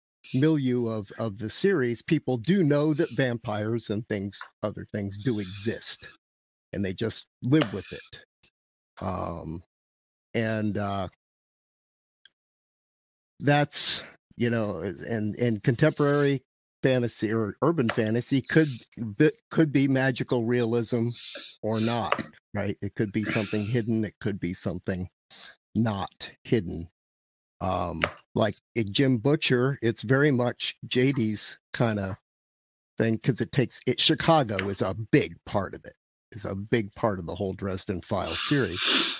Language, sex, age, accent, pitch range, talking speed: English, male, 50-69, American, 100-130 Hz, 135 wpm